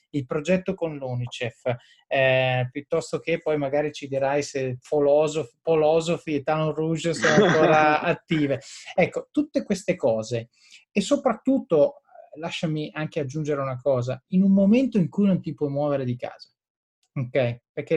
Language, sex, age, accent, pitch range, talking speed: Italian, male, 30-49, native, 135-165 Hz, 140 wpm